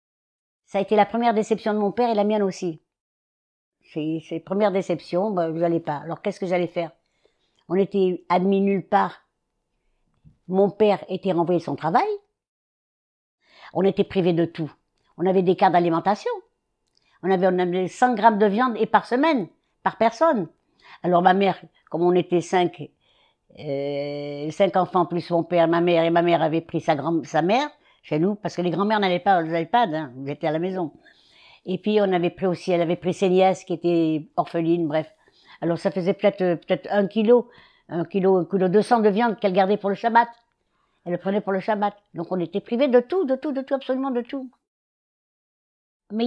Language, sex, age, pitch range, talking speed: French, female, 60-79, 170-210 Hz, 205 wpm